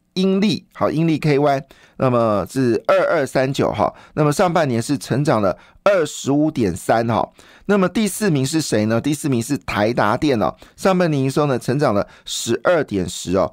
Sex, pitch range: male, 120-160 Hz